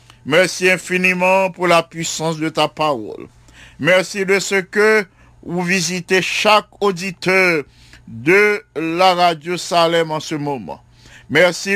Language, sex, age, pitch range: English, male, 50-69, 150-190 Hz